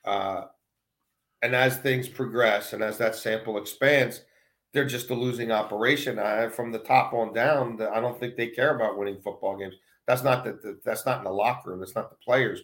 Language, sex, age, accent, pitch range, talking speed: English, male, 40-59, American, 105-130 Hz, 205 wpm